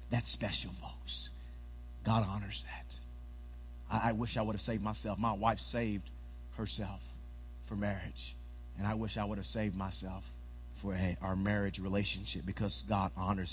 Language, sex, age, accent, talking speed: English, male, 40-59, American, 160 wpm